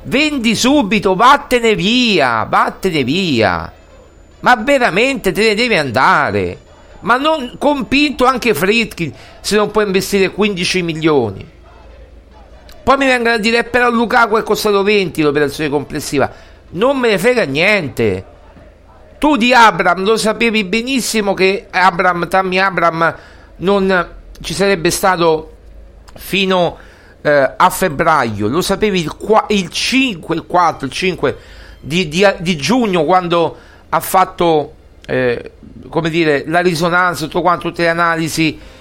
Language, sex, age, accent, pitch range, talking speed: Italian, male, 50-69, native, 155-215 Hz, 125 wpm